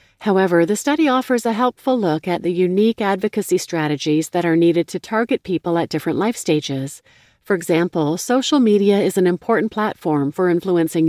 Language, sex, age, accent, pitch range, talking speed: English, female, 40-59, American, 160-205 Hz, 175 wpm